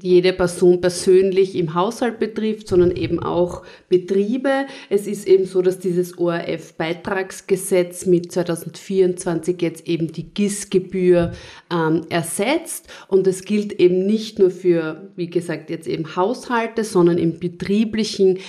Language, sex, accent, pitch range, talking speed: German, female, German, 165-190 Hz, 130 wpm